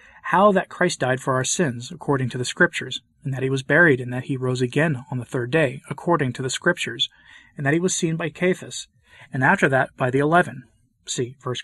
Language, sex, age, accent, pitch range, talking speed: English, male, 30-49, American, 130-165 Hz, 225 wpm